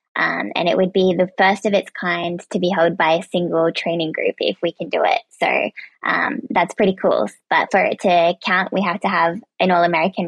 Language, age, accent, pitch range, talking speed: English, 20-39, American, 175-195 Hz, 235 wpm